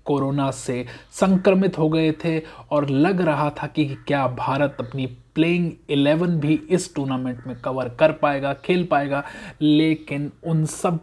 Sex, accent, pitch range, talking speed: male, native, 135-170 Hz, 150 wpm